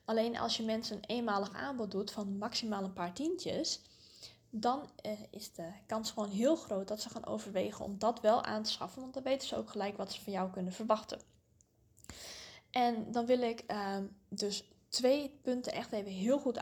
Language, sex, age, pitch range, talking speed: English, female, 10-29, 200-245 Hz, 200 wpm